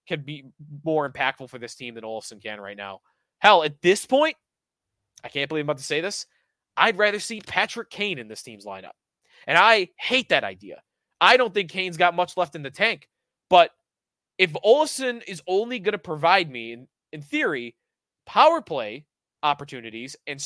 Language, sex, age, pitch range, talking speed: English, male, 20-39, 125-185 Hz, 190 wpm